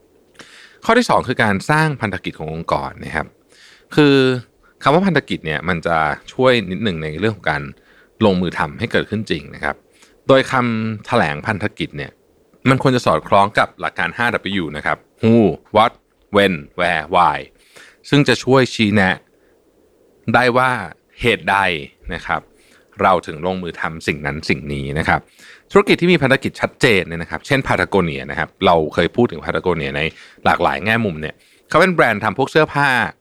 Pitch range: 90-135 Hz